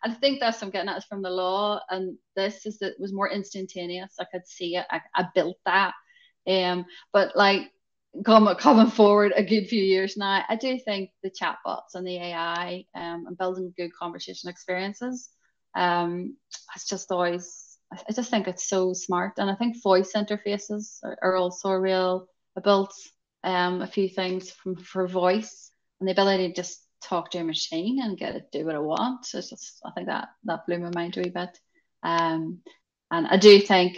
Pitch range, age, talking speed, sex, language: 175-205 Hz, 30-49, 205 wpm, female, English